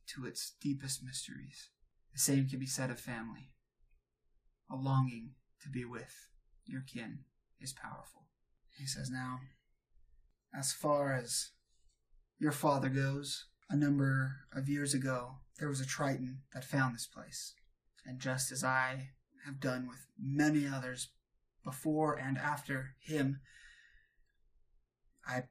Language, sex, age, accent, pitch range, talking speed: English, male, 20-39, American, 120-135 Hz, 130 wpm